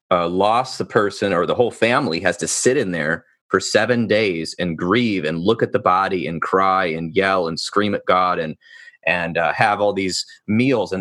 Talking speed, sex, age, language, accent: 215 wpm, male, 30-49, English, American